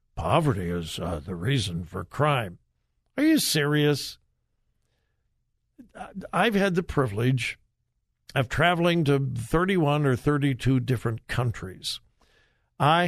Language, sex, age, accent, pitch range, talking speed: English, male, 60-79, American, 120-185 Hz, 105 wpm